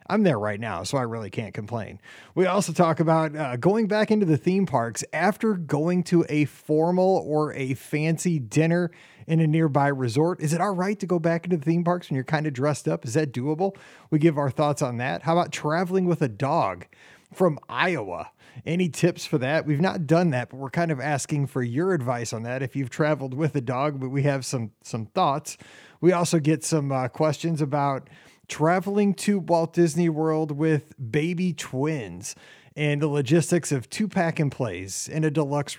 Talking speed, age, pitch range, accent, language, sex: 205 wpm, 30-49, 140-175 Hz, American, English, male